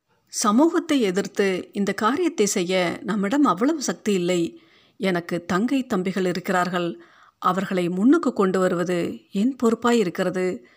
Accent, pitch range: native, 180-230 Hz